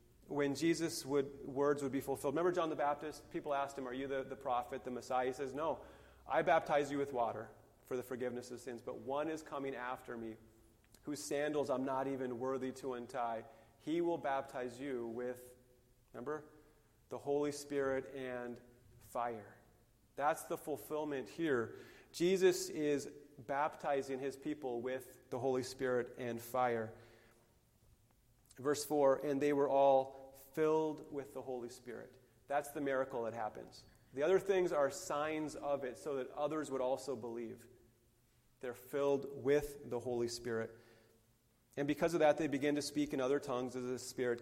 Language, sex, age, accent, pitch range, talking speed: English, male, 30-49, American, 120-145 Hz, 165 wpm